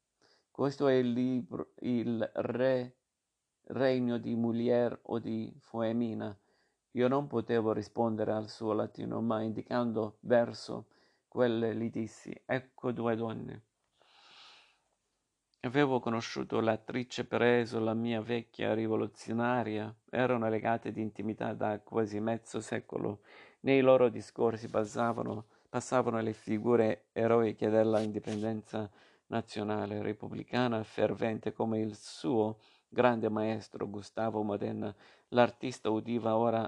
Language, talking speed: Italian, 110 wpm